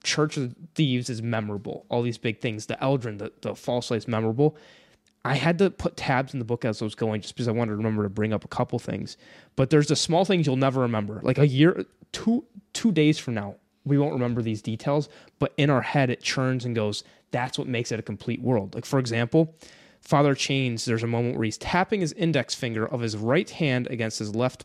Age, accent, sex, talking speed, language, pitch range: 20-39, American, male, 240 wpm, English, 120-155 Hz